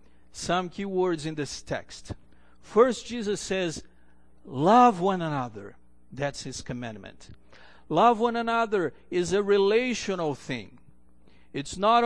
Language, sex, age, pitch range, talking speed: English, male, 50-69, 140-205 Hz, 120 wpm